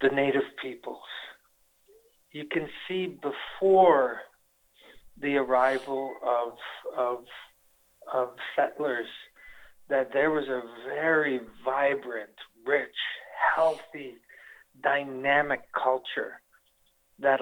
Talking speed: 85 wpm